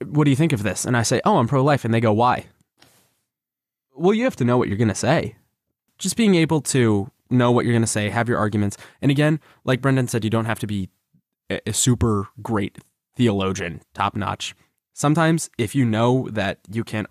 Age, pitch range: 20-39, 105-125 Hz